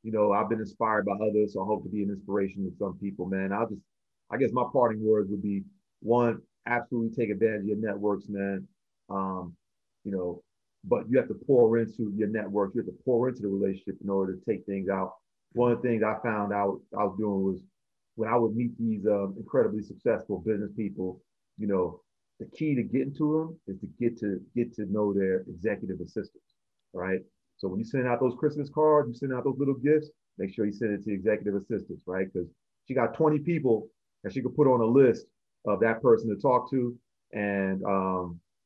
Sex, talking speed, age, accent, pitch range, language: male, 225 wpm, 40-59, American, 100-130 Hz, English